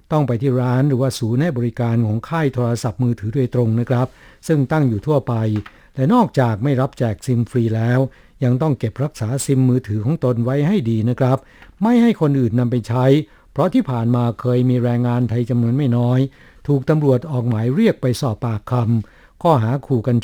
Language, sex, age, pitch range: Thai, male, 60-79, 120-140 Hz